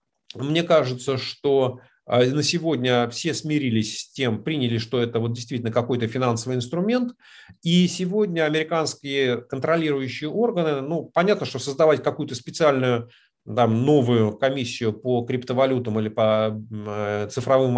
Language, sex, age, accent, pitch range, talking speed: Russian, male, 40-59, native, 125-170 Hz, 115 wpm